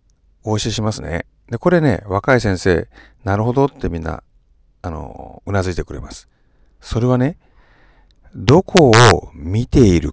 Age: 50-69